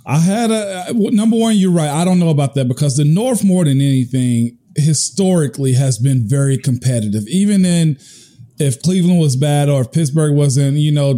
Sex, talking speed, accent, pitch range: male, 190 wpm, American, 140-180 Hz